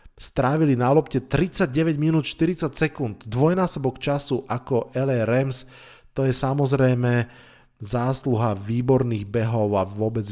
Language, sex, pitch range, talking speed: Slovak, male, 115-135 Hz, 115 wpm